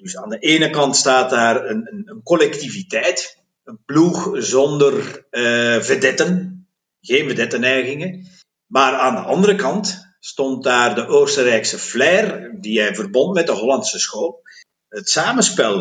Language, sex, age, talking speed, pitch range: Dutch, male, 50-69, 140 wpm, 125-195 Hz